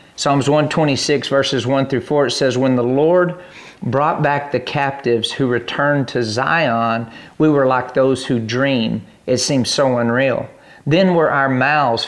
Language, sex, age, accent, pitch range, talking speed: English, male, 50-69, American, 125-150 Hz, 165 wpm